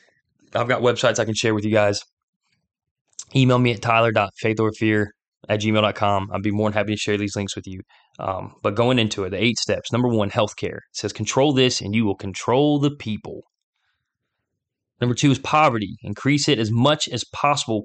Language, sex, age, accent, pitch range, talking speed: English, male, 20-39, American, 110-145 Hz, 190 wpm